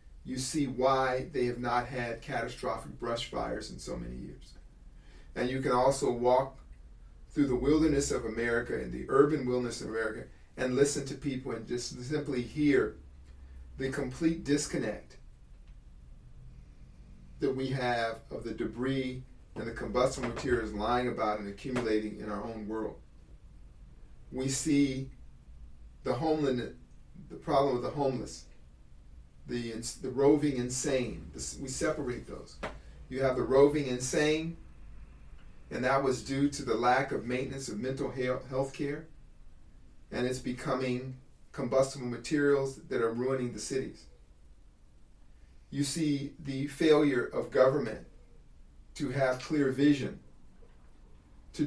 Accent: American